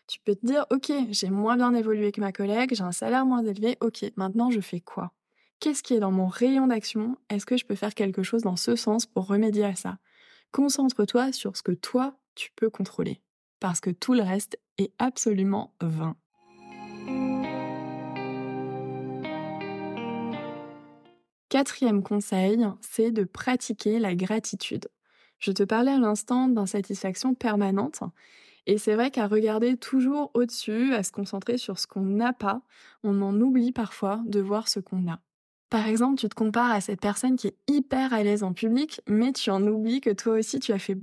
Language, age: French, 20-39